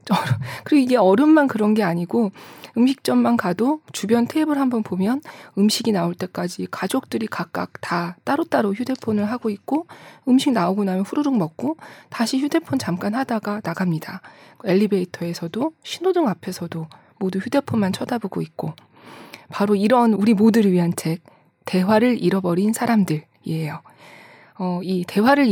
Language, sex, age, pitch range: Korean, female, 20-39, 180-245 Hz